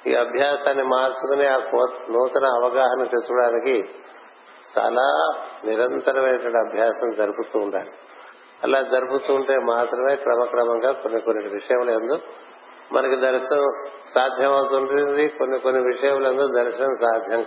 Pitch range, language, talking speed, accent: 120-135 Hz, Telugu, 95 wpm, native